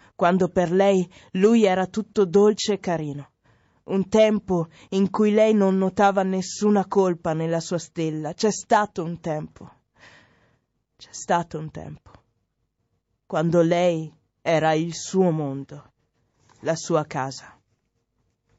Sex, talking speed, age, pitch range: female, 125 wpm, 20-39, 150-200 Hz